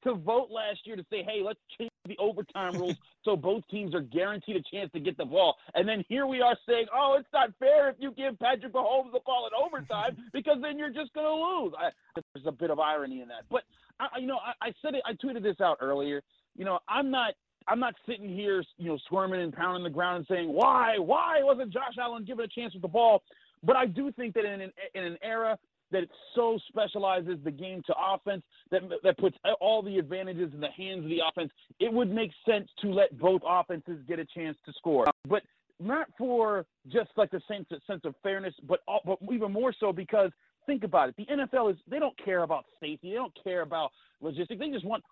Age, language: 30-49, English